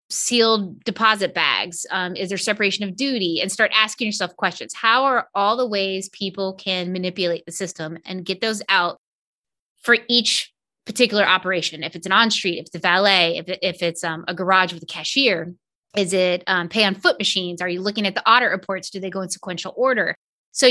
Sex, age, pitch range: female, 20-39, 180-220 Hz